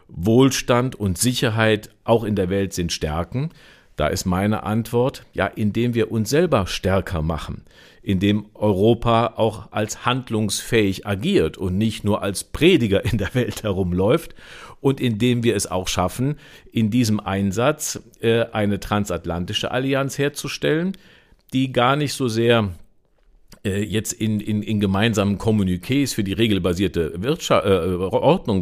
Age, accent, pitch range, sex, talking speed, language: 50-69, German, 100-125 Hz, male, 135 wpm, German